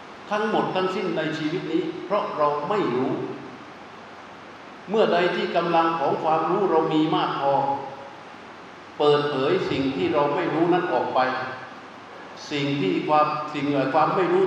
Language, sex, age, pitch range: Thai, male, 60-79, 140-185 Hz